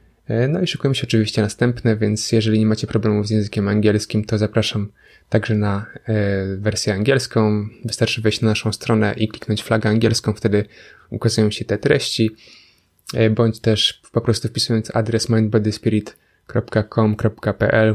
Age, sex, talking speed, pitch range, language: 20-39, male, 135 wpm, 110-115 Hz, Polish